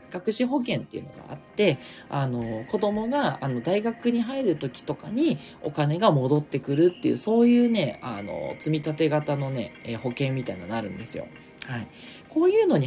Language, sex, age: Japanese, male, 40-59